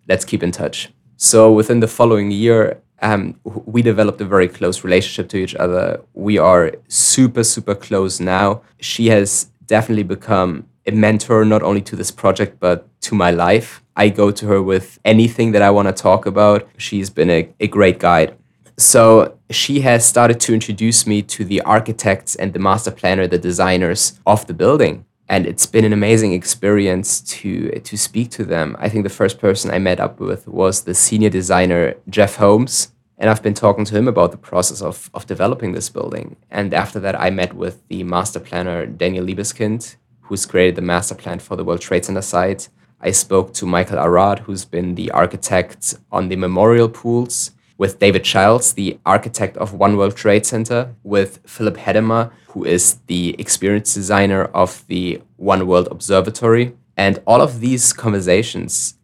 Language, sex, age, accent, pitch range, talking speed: English, male, 20-39, German, 90-110 Hz, 185 wpm